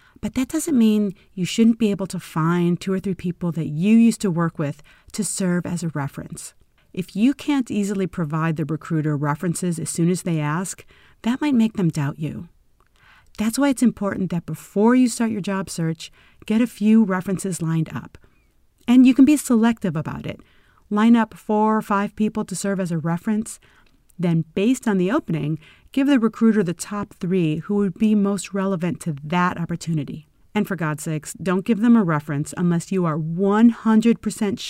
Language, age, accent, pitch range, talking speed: English, 40-59, American, 165-215 Hz, 190 wpm